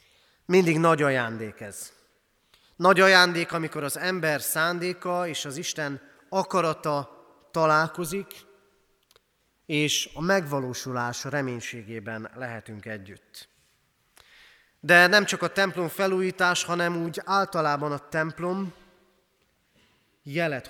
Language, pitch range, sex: Hungarian, 140-185 Hz, male